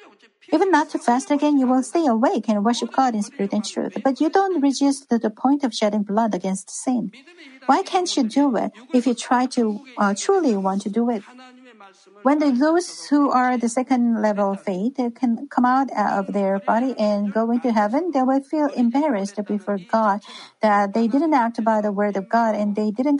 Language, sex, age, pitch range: Korean, female, 50-69, 210-275 Hz